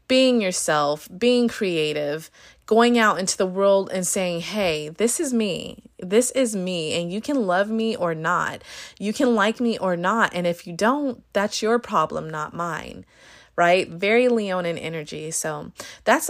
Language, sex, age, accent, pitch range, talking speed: English, female, 30-49, American, 165-200 Hz, 170 wpm